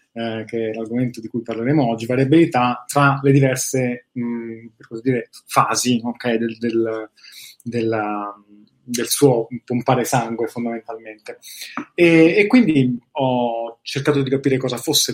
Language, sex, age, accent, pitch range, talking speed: Italian, male, 20-39, native, 115-135 Hz, 135 wpm